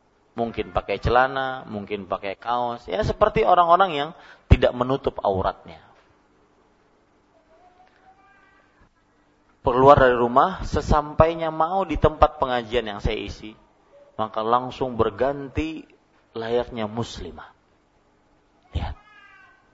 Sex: male